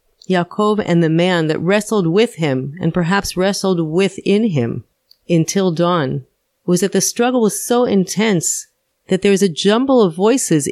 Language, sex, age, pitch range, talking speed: English, female, 40-59, 175-220 Hz, 160 wpm